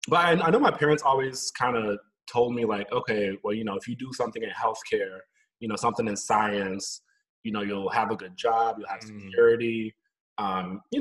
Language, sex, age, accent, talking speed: English, male, 20-39, American, 205 wpm